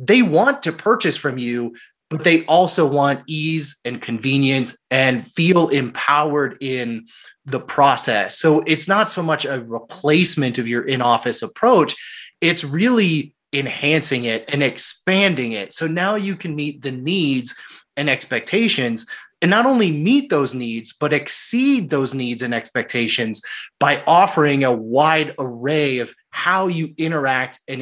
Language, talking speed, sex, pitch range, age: English, 145 wpm, male, 130-175 Hz, 20-39